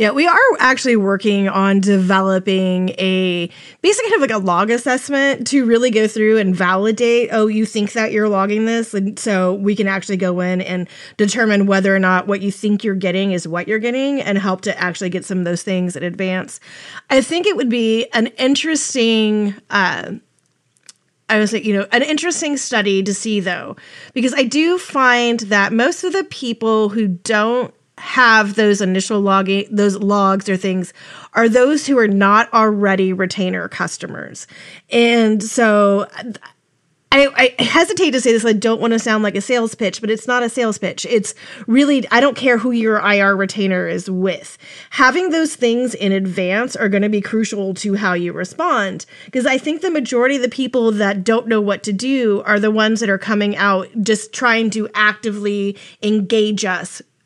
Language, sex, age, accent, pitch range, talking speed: English, female, 30-49, American, 195-245 Hz, 190 wpm